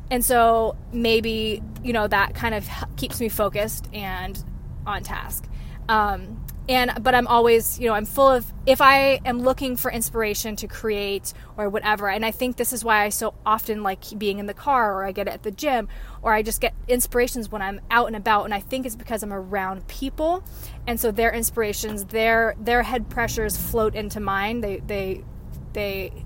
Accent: American